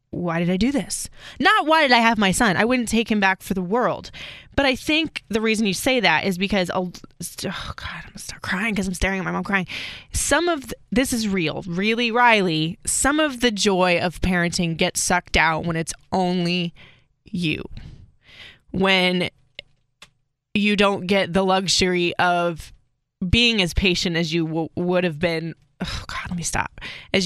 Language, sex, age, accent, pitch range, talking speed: English, female, 20-39, American, 175-215 Hz, 185 wpm